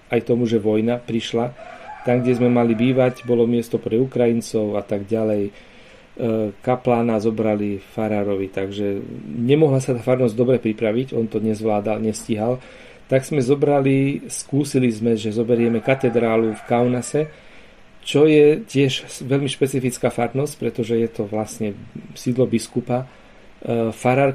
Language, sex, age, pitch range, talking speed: Slovak, male, 40-59, 115-130 Hz, 135 wpm